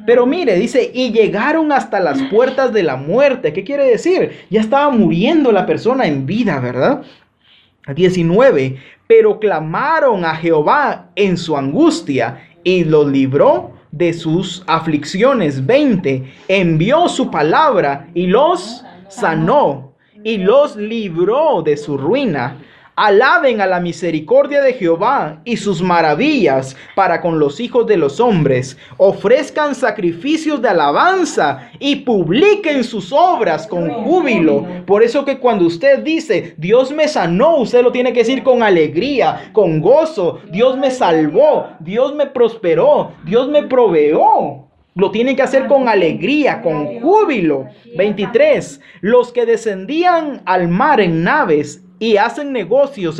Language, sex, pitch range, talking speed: Spanish, male, 170-280 Hz, 135 wpm